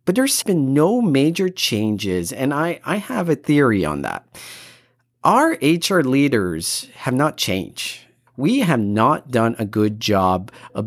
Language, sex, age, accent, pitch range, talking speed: English, male, 40-59, American, 105-170 Hz, 155 wpm